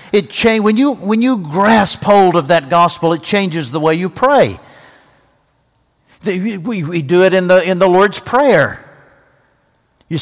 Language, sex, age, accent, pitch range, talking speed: English, male, 60-79, American, 135-185 Hz, 165 wpm